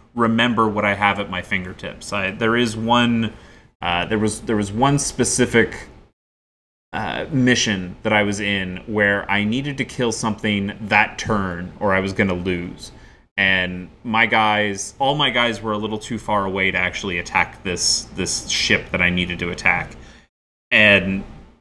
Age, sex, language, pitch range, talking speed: 30-49, male, English, 100-130 Hz, 170 wpm